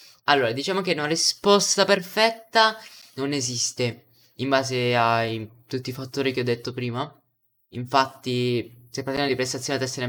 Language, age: Italian, 10-29